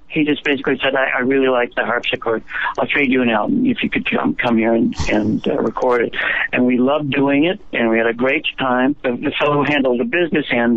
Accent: American